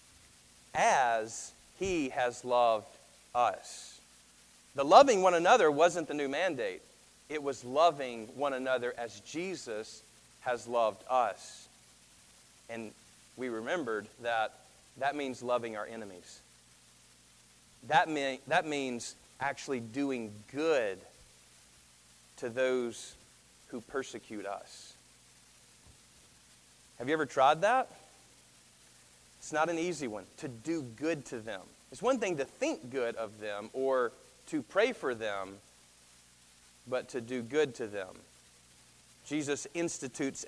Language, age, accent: English, 40-59, American